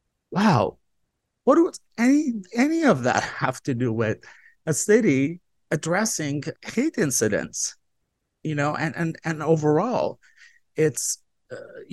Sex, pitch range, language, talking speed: male, 115-160 Hz, English, 120 wpm